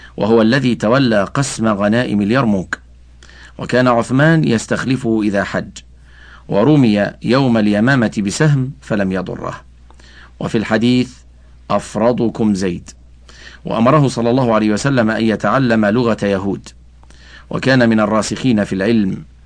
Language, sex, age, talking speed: Arabic, male, 50-69, 110 wpm